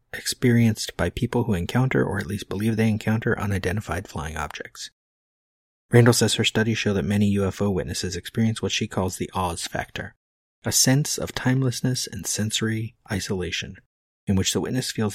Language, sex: English, male